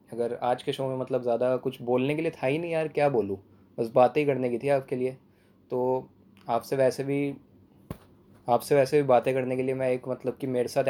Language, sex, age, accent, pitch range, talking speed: English, male, 20-39, Indian, 115-130 Hz, 230 wpm